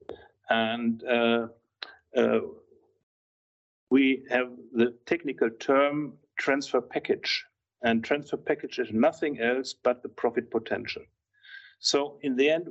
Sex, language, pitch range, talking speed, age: male, English, 125-165 Hz, 115 wpm, 50-69